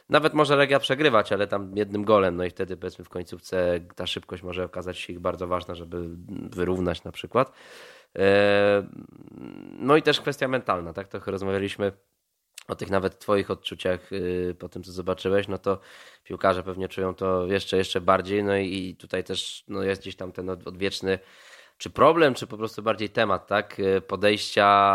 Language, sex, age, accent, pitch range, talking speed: Polish, male, 20-39, native, 90-105 Hz, 170 wpm